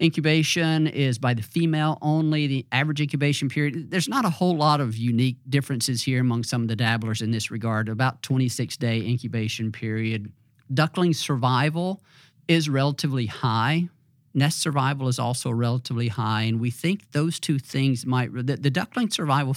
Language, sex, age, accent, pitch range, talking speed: English, male, 50-69, American, 115-140 Hz, 165 wpm